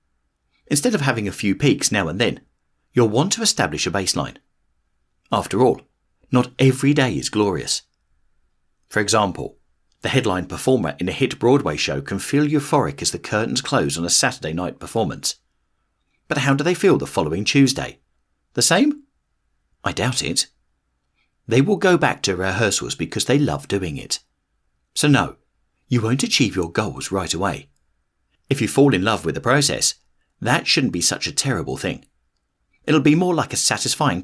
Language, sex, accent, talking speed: English, male, British, 170 wpm